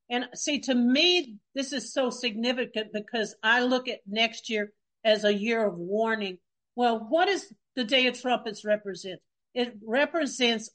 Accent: American